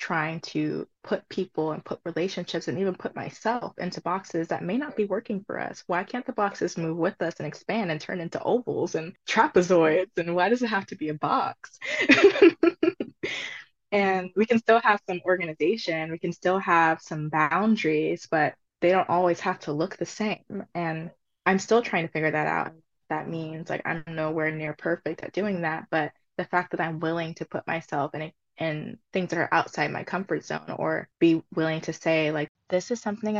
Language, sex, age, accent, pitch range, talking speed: English, female, 20-39, American, 155-185 Hz, 200 wpm